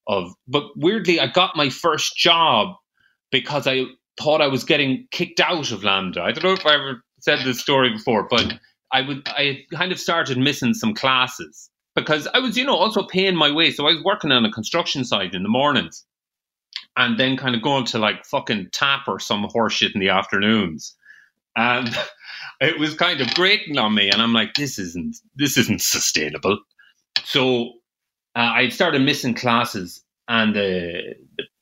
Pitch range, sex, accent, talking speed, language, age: 110-160 Hz, male, Irish, 185 wpm, English, 30-49